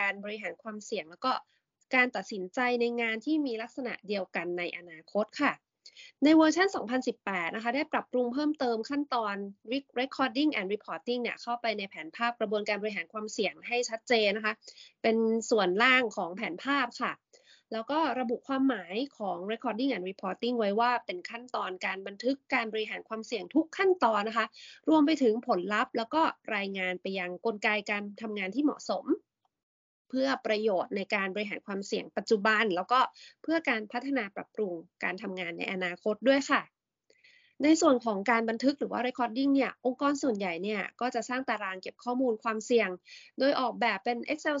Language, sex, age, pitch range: Thai, female, 20-39, 210-270 Hz